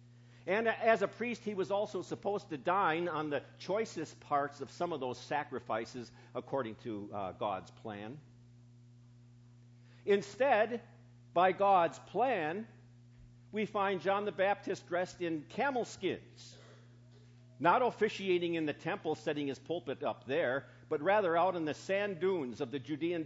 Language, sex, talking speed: English, male, 145 wpm